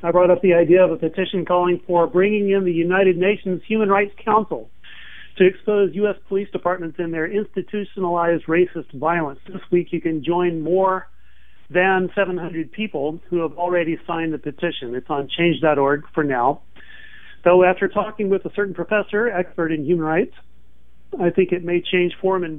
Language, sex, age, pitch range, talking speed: English, male, 40-59, 155-190 Hz, 180 wpm